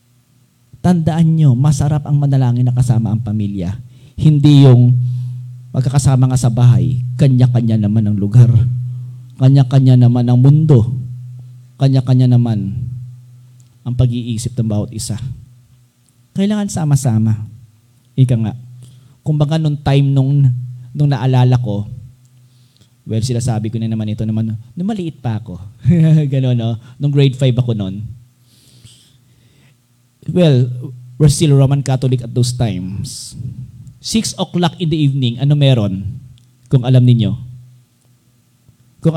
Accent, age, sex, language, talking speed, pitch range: native, 40-59, male, Filipino, 125 wpm, 120-135 Hz